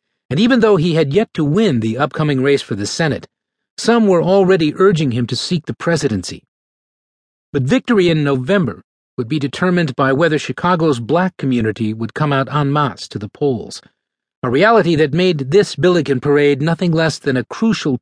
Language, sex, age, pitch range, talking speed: English, male, 40-59, 130-175 Hz, 185 wpm